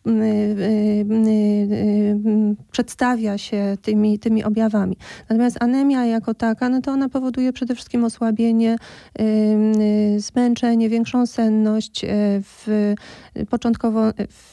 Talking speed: 85 wpm